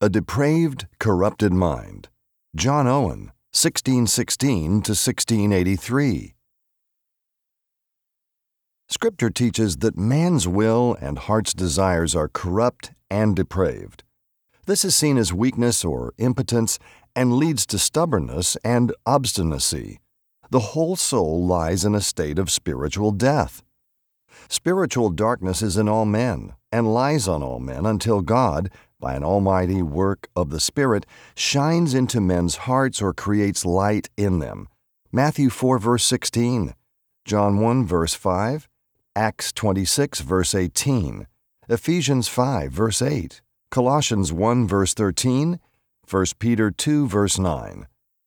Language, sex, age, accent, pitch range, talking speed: Spanish, male, 50-69, American, 95-125 Hz, 120 wpm